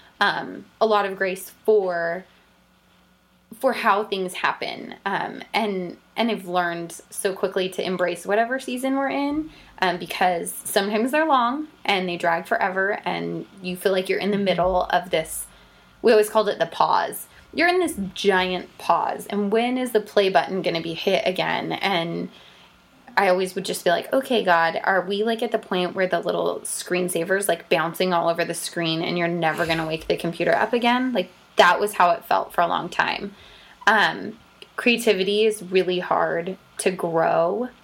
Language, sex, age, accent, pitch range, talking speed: English, female, 20-39, American, 175-215 Hz, 185 wpm